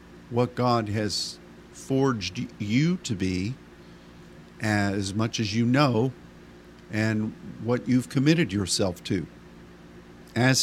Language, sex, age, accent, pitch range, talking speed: English, male, 50-69, American, 85-120 Hz, 105 wpm